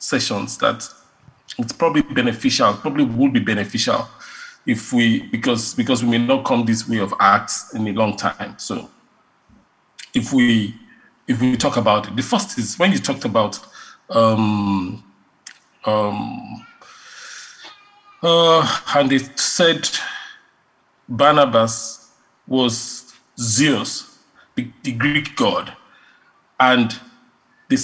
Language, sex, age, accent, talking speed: English, male, 40-59, Nigerian, 120 wpm